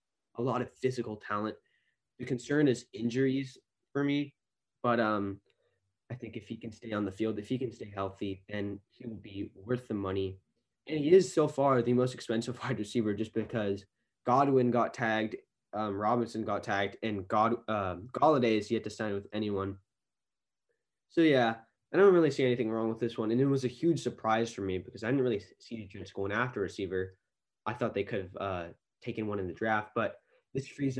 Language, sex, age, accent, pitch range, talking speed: English, male, 10-29, American, 100-125 Hz, 205 wpm